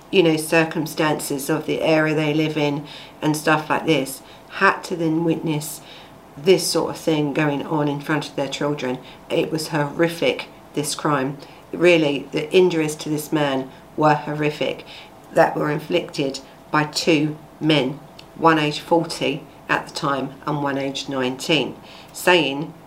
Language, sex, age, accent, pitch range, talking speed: English, female, 50-69, British, 145-165 Hz, 150 wpm